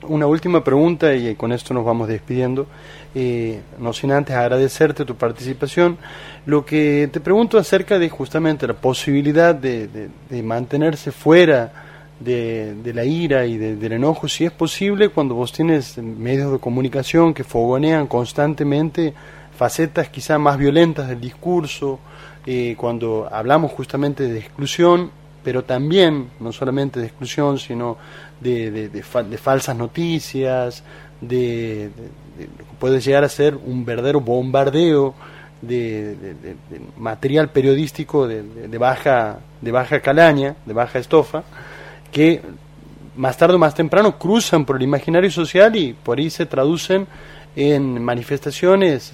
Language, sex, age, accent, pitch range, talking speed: Spanish, male, 30-49, Argentinian, 125-155 Hz, 150 wpm